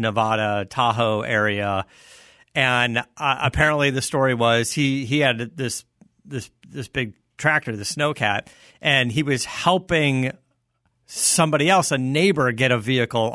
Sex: male